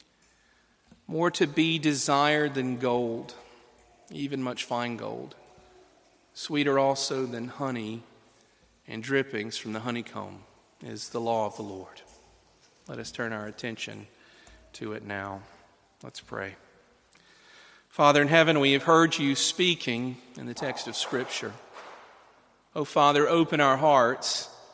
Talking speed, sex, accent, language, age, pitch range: 130 wpm, male, American, English, 40-59, 115-140 Hz